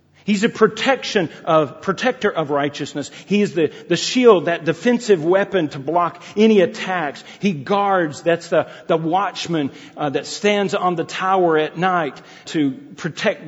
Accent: American